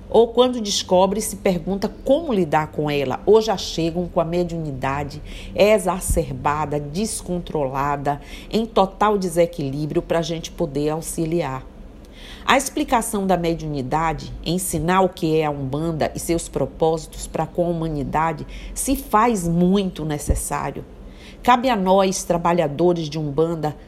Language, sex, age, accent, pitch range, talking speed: Portuguese, female, 50-69, Brazilian, 155-185 Hz, 130 wpm